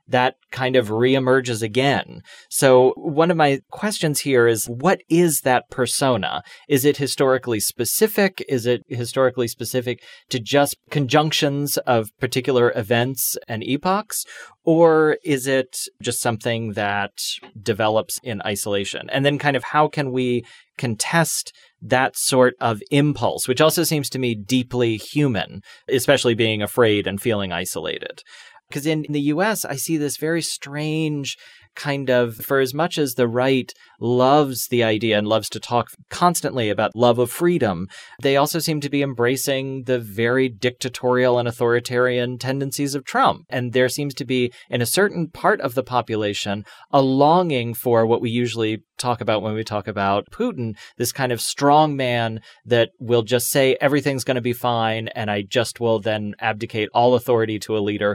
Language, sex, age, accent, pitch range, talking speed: English, male, 30-49, American, 115-145 Hz, 165 wpm